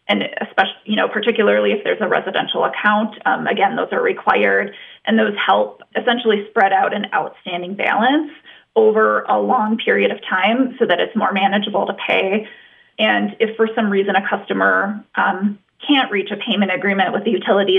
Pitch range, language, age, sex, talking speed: 195-235 Hz, English, 20-39, female, 180 wpm